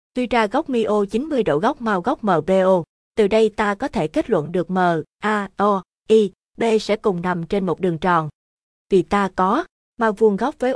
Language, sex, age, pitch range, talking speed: Vietnamese, female, 20-39, 190-230 Hz, 205 wpm